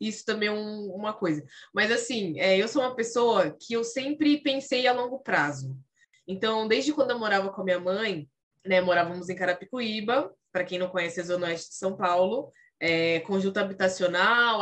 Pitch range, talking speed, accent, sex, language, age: 190-255 Hz, 190 wpm, Brazilian, female, Portuguese, 20-39